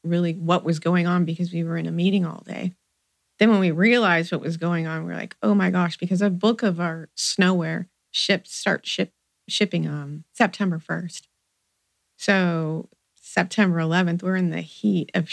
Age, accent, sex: 30-49, American, female